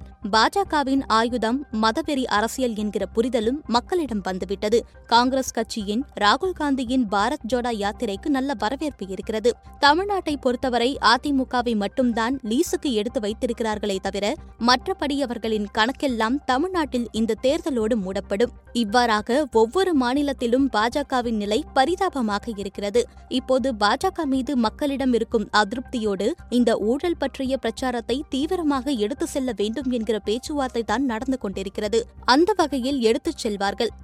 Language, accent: Tamil, native